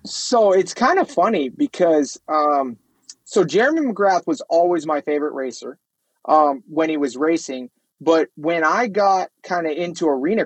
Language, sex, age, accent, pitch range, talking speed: English, male, 30-49, American, 145-180 Hz, 160 wpm